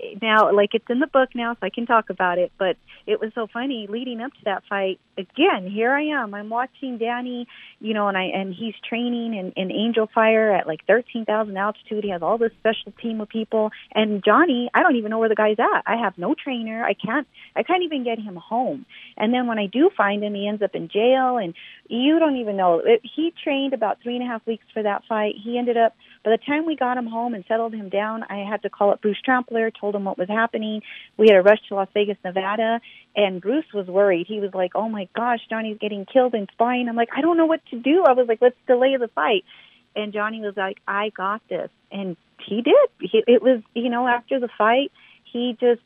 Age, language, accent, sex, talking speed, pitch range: 30-49, English, American, female, 245 wpm, 205-245 Hz